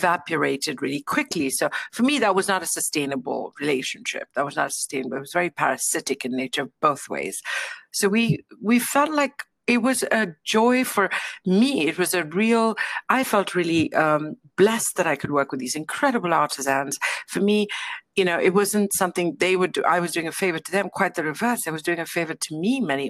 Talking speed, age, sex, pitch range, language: 210 wpm, 60-79, female, 160-215 Hz, English